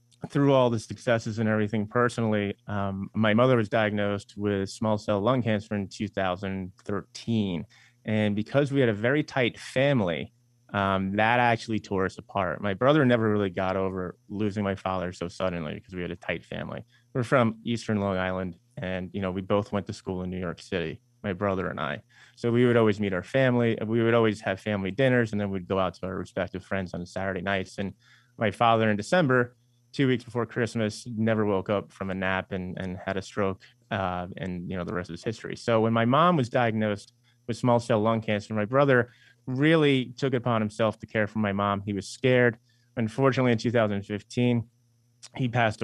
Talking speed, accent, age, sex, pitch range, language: 205 wpm, American, 30-49, male, 95-120 Hz, English